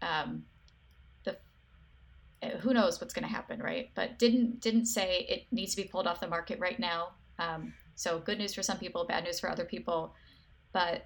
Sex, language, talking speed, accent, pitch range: female, English, 195 wpm, American, 175-230 Hz